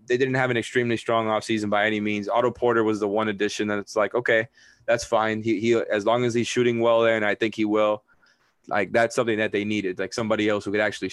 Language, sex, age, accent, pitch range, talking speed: English, male, 20-39, American, 105-115 Hz, 260 wpm